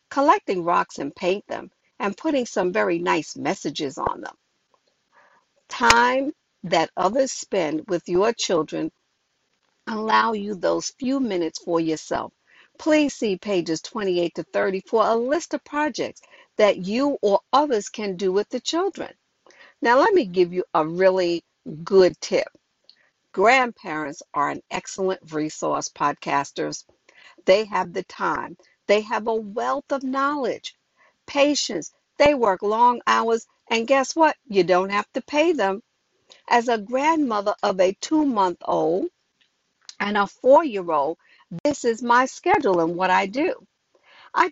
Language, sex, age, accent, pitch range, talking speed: English, female, 60-79, American, 190-280 Hz, 140 wpm